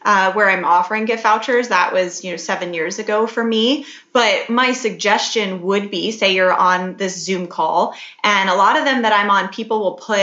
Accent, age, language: American, 20-39, English